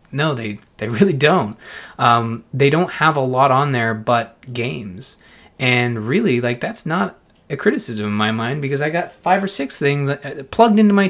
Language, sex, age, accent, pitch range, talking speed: English, male, 20-39, American, 110-140 Hz, 190 wpm